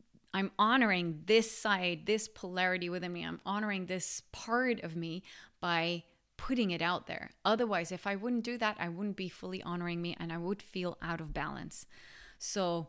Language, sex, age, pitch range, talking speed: English, female, 20-39, 170-220 Hz, 180 wpm